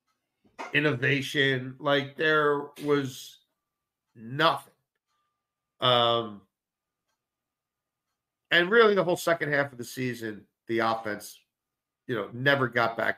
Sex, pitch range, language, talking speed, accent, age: male, 120-155 Hz, English, 100 wpm, American, 50-69